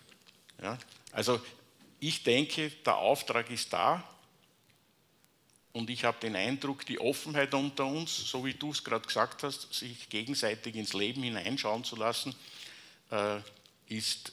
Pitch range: 110-140 Hz